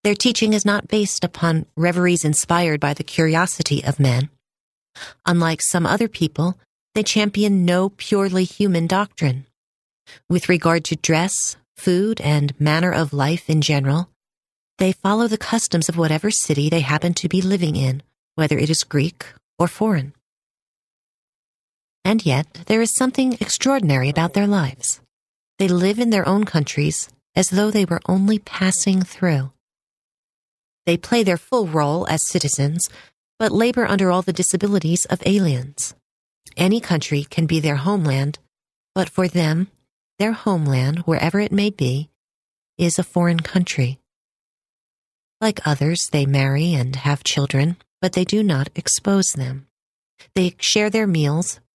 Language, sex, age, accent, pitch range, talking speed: English, female, 40-59, American, 150-195 Hz, 145 wpm